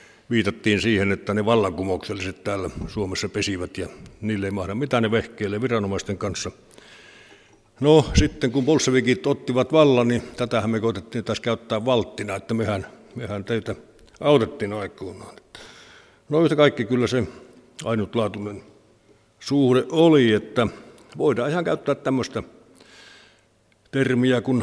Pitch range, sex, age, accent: 105-130 Hz, male, 60-79, native